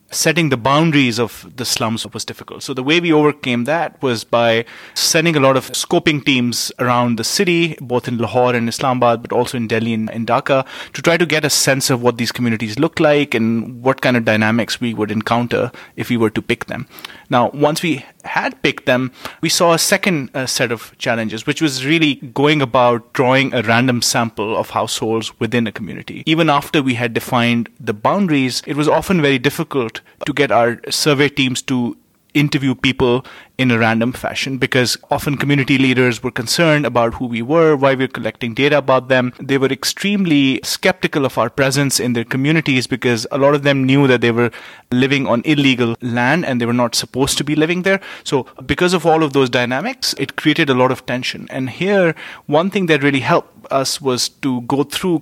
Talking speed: 205 wpm